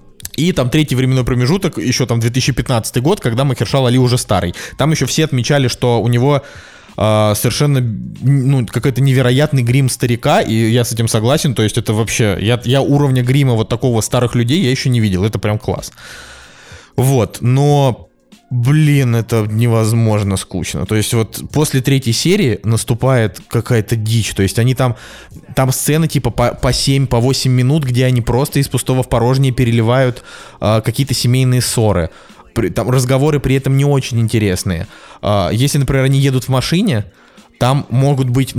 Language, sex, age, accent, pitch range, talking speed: Russian, male, 20-39, native, 115-135 Hz, 170 wpm